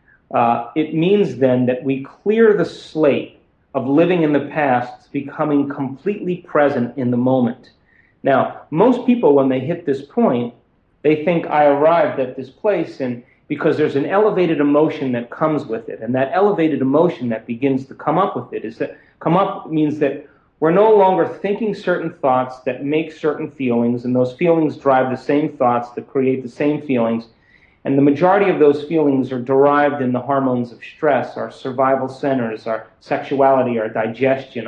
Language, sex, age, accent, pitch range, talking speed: English, male, 40-59, American, 125-155 Hz, 180 wpm